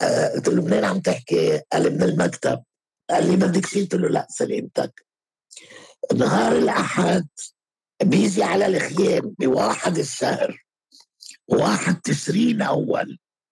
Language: Arabic